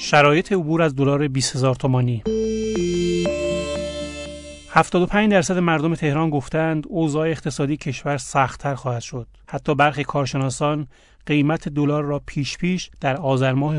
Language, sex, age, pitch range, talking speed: Persian, male, 30-49, 130-155 Hz, 115 wpm